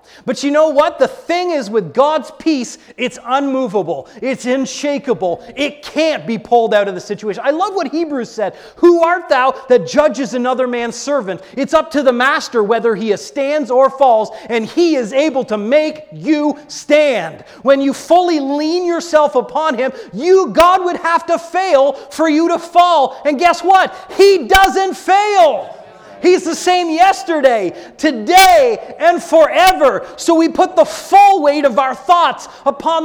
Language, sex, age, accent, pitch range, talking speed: English, male, 30-49, American, 235-320 Hz, 170 wpm